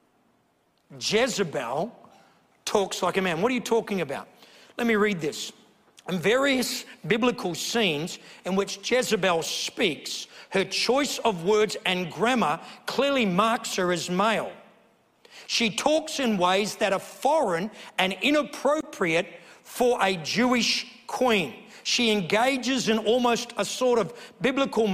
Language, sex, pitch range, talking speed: English, male, 195-255 Hz, 130 wpm